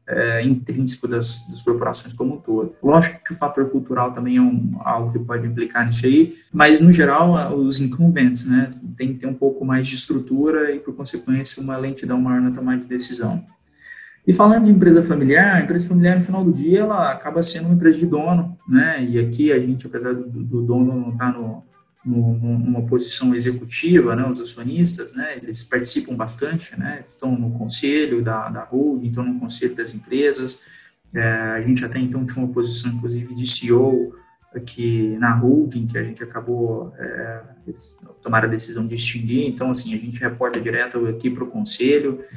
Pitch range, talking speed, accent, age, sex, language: 120-140 Hz, 190 wpm, Brazilian, 20-39, male, Portuguese